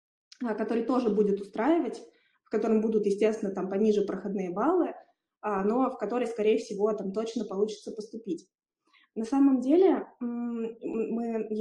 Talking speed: 130 wpm